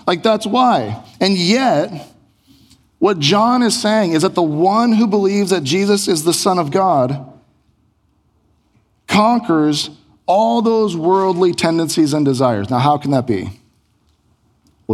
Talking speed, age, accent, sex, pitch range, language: 140 wpm, 40-59, American, male, 115-170 Hz, English